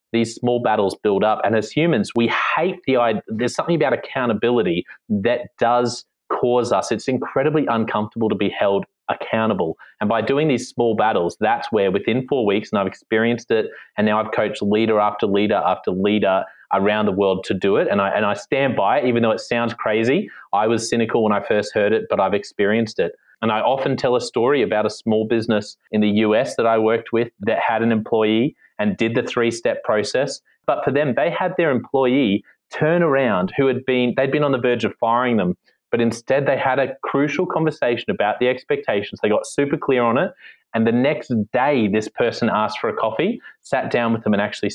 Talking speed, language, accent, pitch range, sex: 215 wpm, English, Australian, 110-135 Hz, male